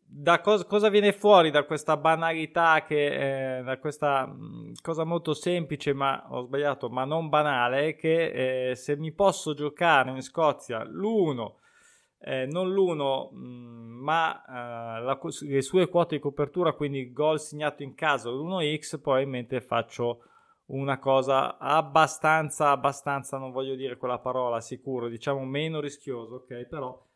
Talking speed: 150 wpm